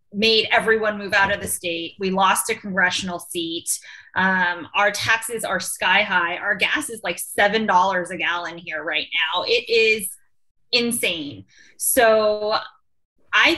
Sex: female